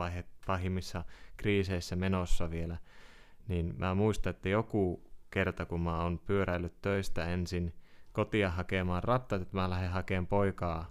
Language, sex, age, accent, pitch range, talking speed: Finnish, male, 20-39, native, 90-100 Hz, 130 wpm